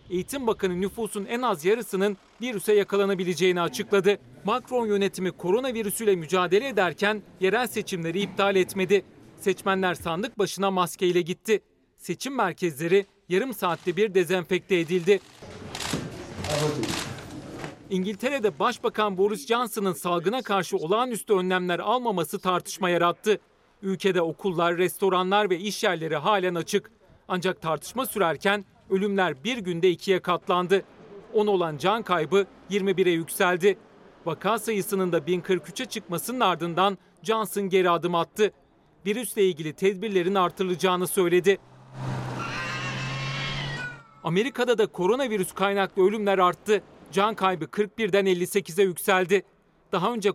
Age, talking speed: 40-59, 110 wpm